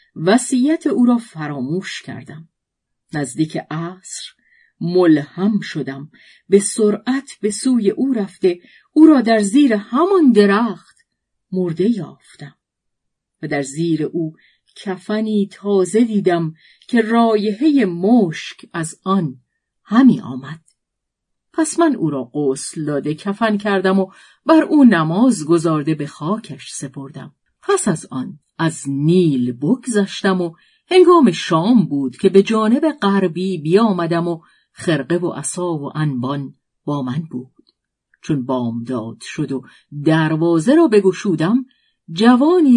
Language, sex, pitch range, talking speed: Persian, female, 155-225 Hz, 120 wpm